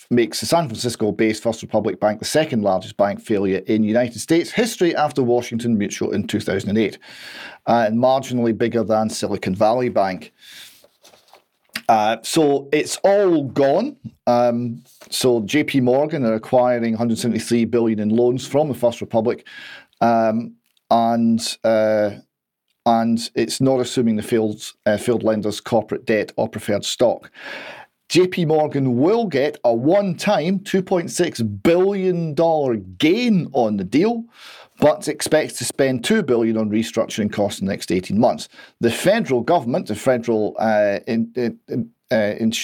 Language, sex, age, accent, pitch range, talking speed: English, male, 40-59, British, 110-140 Hz, 135 wpm